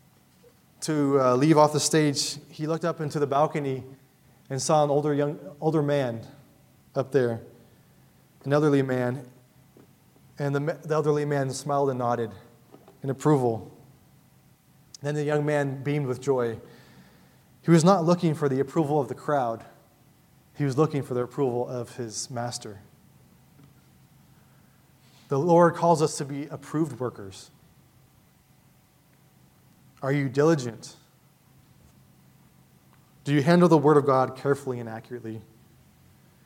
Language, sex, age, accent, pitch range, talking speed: English, male, 20-39, American, 125-150 Hz, 135 wpm